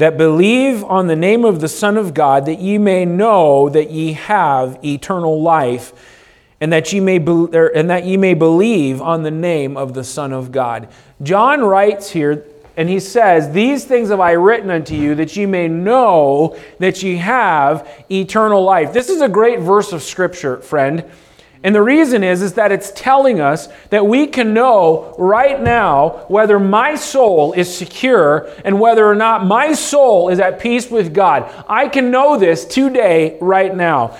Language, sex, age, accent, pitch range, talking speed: English, male, 40-59, American, 165-250 Hz, 185 wpm